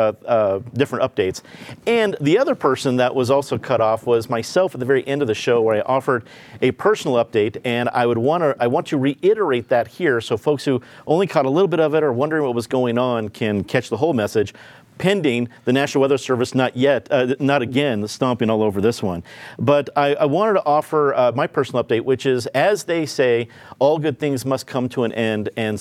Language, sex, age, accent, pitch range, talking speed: English, male, 40-59, American, 115-145 Hz, 230 wpm